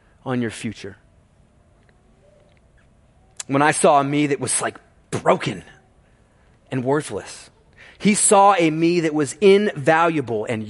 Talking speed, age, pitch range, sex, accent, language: 125 wpm, 30-49, 145-195 Hz, male, American, English